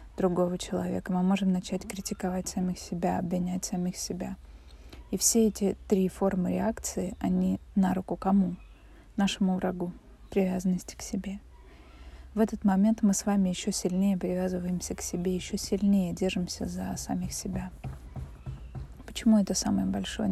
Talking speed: 140 wpm